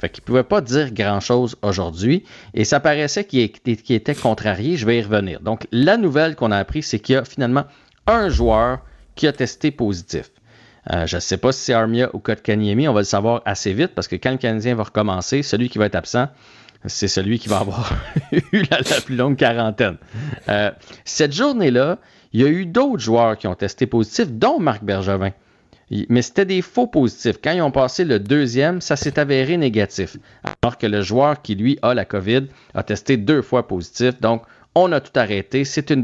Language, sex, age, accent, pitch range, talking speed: French, male, 40-59, Canadian, 105-135 Hz, 215 wpm